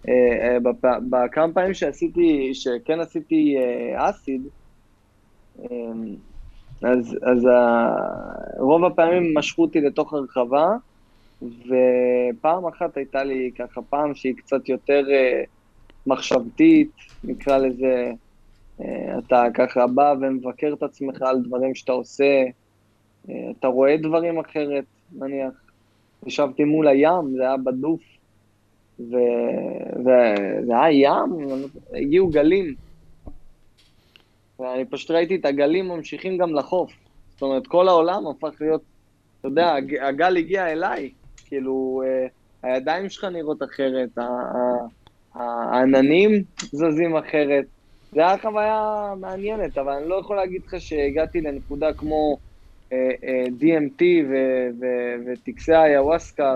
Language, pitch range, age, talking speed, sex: Hebrew, 125-155 Hz, 20-39, 120 wpm, male